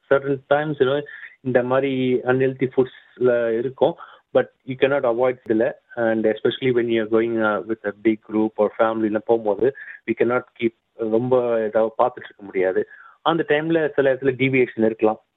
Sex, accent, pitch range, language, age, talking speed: male, native, 110-140 Hz, Tamil, 30-49, 200 wpm